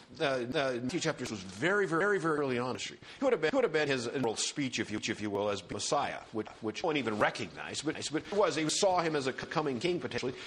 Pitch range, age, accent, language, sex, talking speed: 125-205 Hz, 50-69, American, English, male, 245 wpm